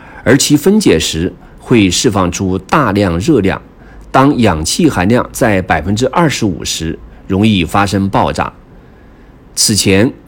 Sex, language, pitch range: male, Chinese, 90-145 Hz